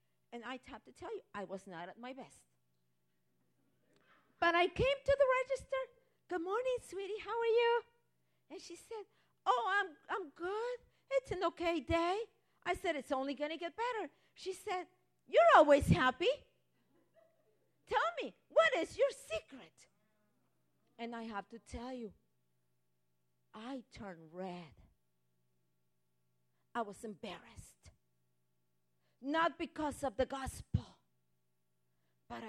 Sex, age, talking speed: female, 50-69, 135 wpm